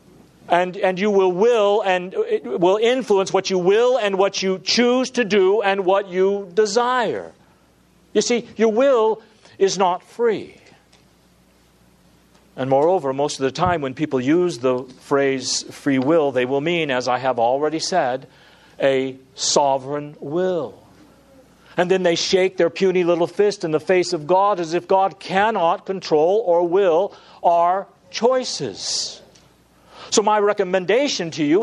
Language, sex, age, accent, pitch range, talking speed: English, male, 50-69, American, 135-195 Hz, 150 wpm